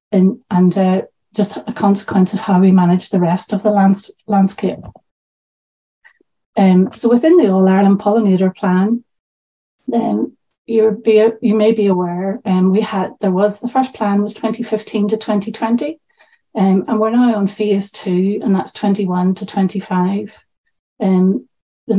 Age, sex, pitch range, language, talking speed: 30-49, female, 190-220 Hz, English, 155 wpm